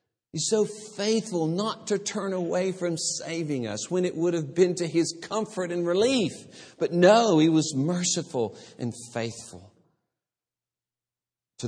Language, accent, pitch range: English, American, 110-160 Hz